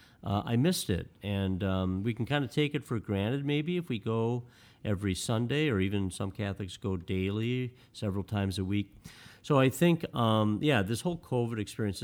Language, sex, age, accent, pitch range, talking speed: English, male, 50-69, American, 95-120 Hz, 195 wpm